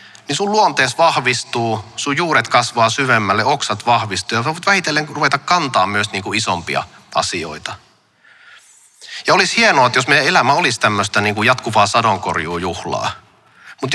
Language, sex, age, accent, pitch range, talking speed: Finnish, male, 30-49, native, 105-135 Hz, 145 wpm